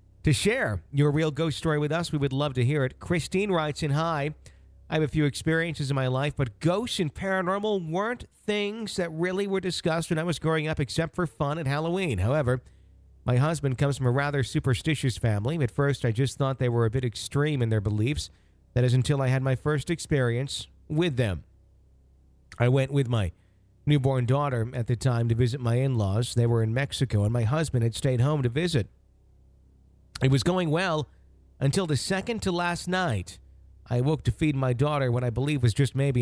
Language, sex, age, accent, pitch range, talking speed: English, male, 50-69, American, 105-150 Hz, 205 wpm